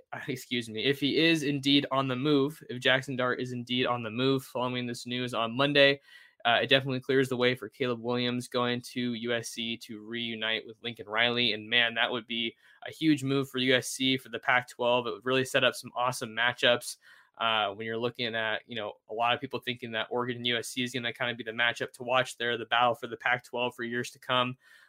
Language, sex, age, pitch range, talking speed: English, male, 20-39, 120-130 Hz, 230 wpm